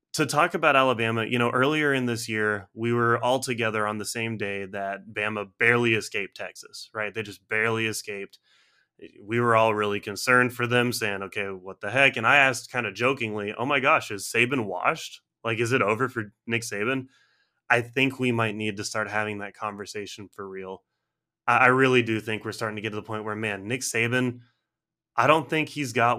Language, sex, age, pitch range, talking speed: English, male, 20-39, 110-120 Hz, 210 wpm